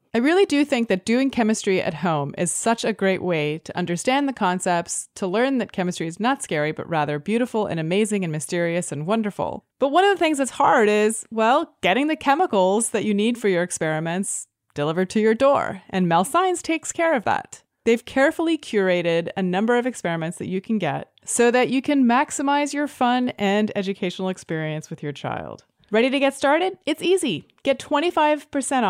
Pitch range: 180-270 Hz